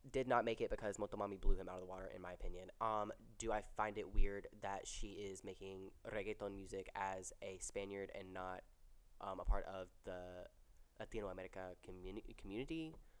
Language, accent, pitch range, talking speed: English, American, 95-120 Hz, 185 wpm